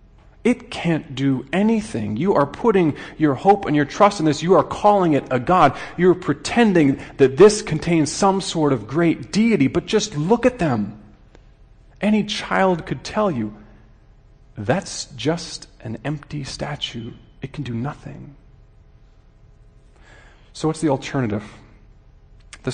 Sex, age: male, 40-59